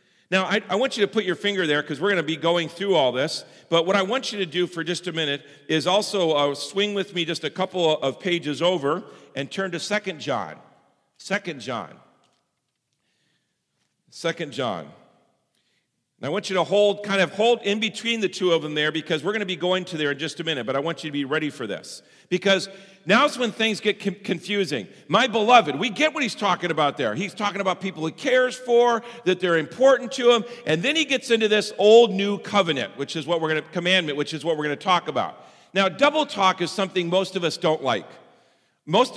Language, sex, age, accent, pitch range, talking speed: English, male, 50-69, American, 165-205 Hz, 225 wpm